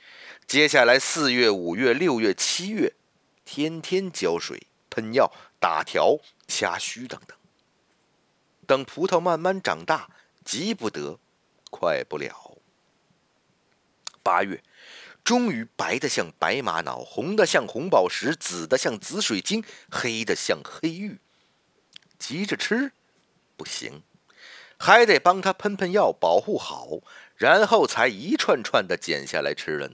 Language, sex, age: Chinese, male, 50-69